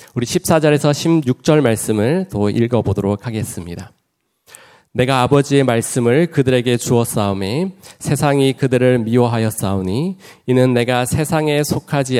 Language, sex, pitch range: Korean, male, 110-140 Hz